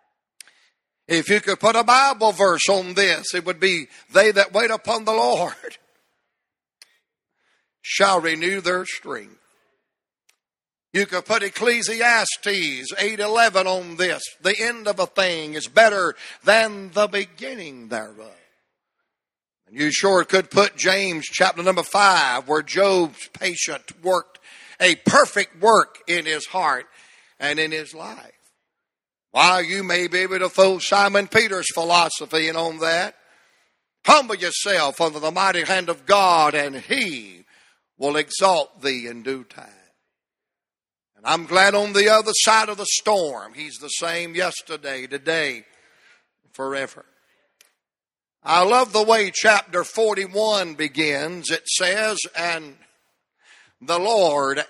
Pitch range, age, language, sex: 160-205 Hz, 60-79, English, male